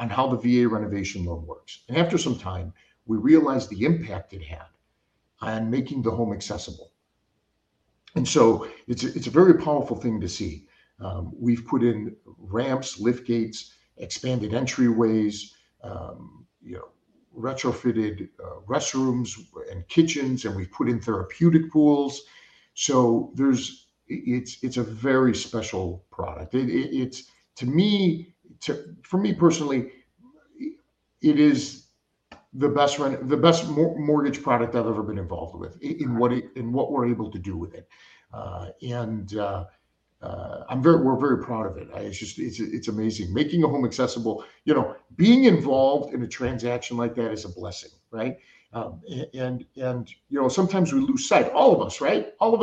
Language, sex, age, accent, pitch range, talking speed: English, male, 50-69, American, 110-150 Hz, 170 wpm